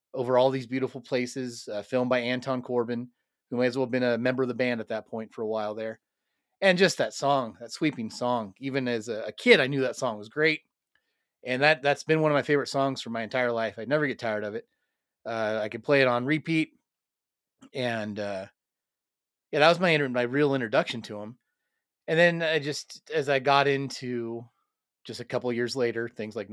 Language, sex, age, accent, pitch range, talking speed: English, male, 30-49, American, 115-140 Hz, 220 wpm